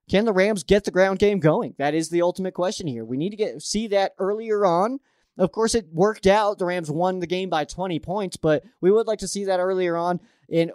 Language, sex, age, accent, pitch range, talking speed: English, male, 20-39, American, 160-195 Hz, 250 wpm